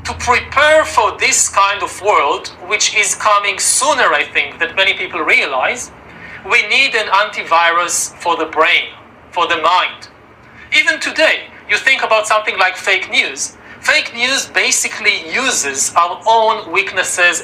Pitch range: 195-260 Hz